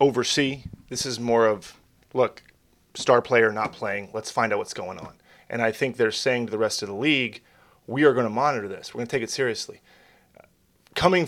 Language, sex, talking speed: English, male, 215 wpm